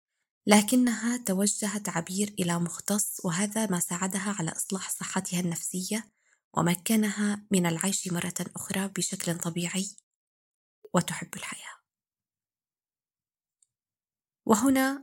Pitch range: 180-220 Hz